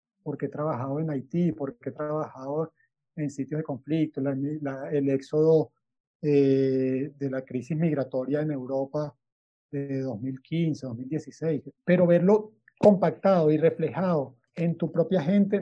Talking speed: 135 wpm